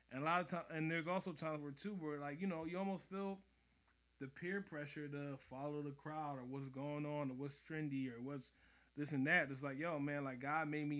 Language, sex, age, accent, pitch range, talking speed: English, male, 20-39, American, 130-155 Hz, 245 wpm